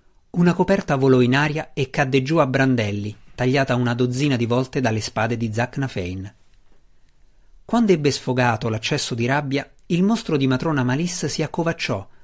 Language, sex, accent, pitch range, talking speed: Italian, male, native, 115-150 Hz, 155 wpm